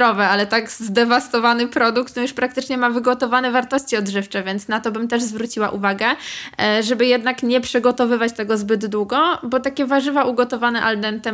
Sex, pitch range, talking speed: female, 205-235 Hz, 160 wpm